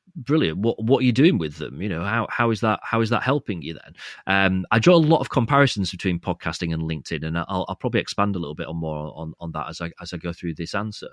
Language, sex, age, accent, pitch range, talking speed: English, male, 30-49, British, 85-110 Hz, 280 wpm